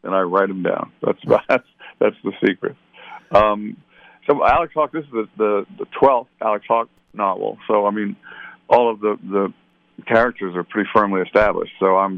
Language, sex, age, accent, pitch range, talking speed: English, male, 60-79, American, 90-105 Hz, 175 wpm